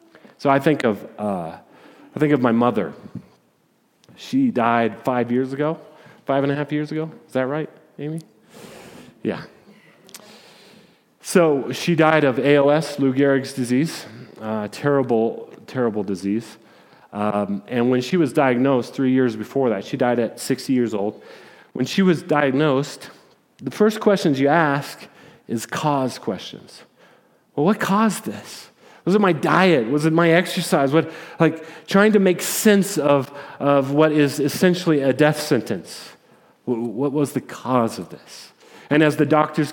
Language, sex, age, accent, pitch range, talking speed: English, male, 30-49, American, 135-160 Hz, 155 wpm